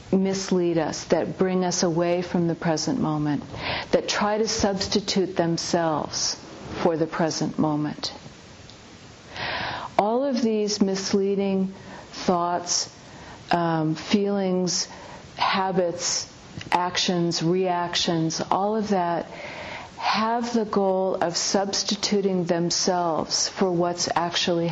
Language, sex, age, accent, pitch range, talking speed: English, female, 50-69, American, 165-195 Hz, 100 wpm